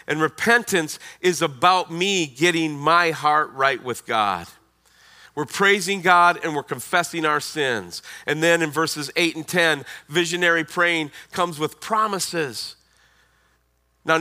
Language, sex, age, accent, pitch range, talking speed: English, male, 40-59, American, 135-185 Hz, 135 wpm